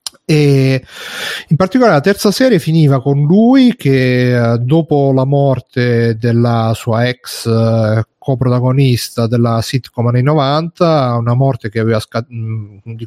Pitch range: 115-140 Hz